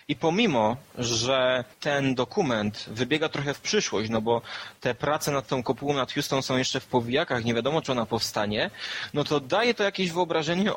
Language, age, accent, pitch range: Polish, 20-39, native, 120-170 Hz